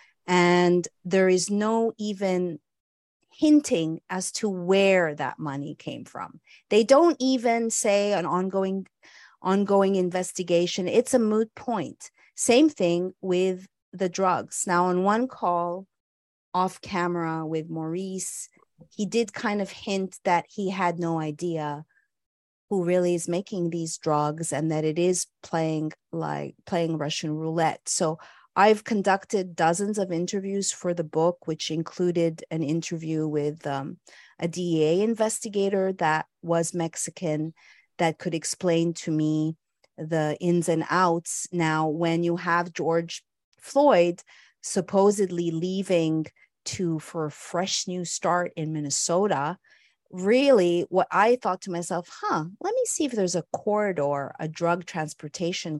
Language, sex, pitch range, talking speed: English, female, 160-195 Hz, 135 wpm